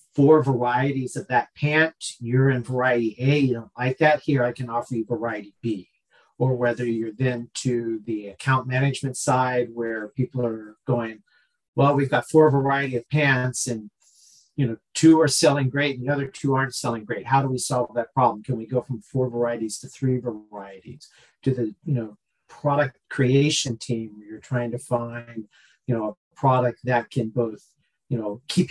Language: English